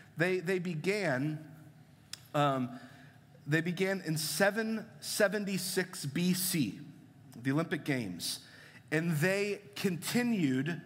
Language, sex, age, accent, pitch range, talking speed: English, male, 30-49, American, 135-175 Hz, 95 wpm